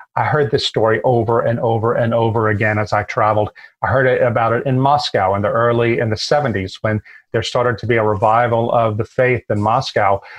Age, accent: 40-59, American